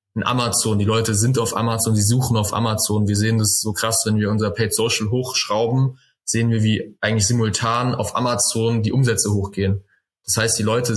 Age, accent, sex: 20-39, German, male